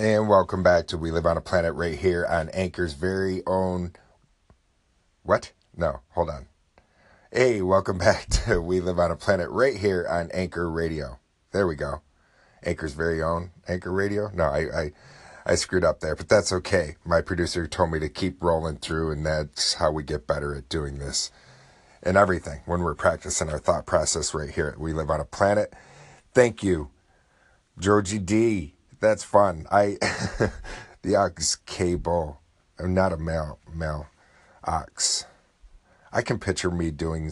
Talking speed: 170 wpm